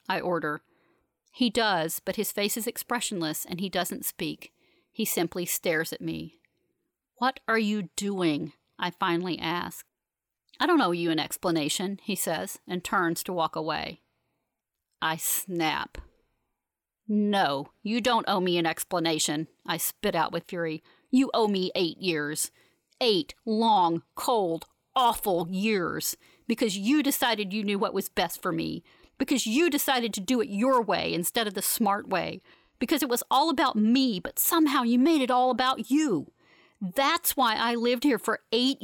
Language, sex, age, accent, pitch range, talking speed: English, female, 40-59, American, 180-265 Hz, 165 wpm